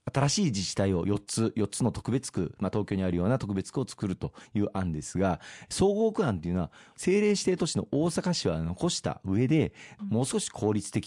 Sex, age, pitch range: male, 40-59, 95-150 Hz